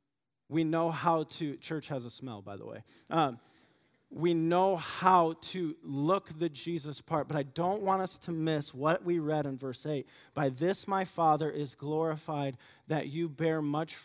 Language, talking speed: English, 185 wpm